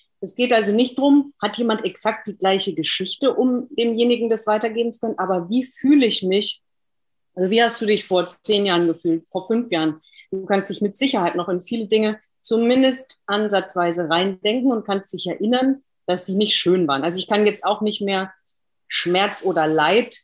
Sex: female